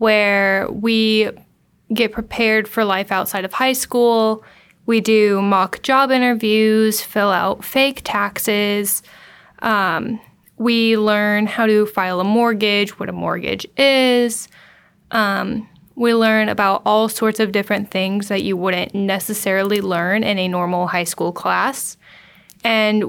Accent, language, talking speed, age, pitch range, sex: American, English, 135 wpm, 10-29, 200-225 Hz, female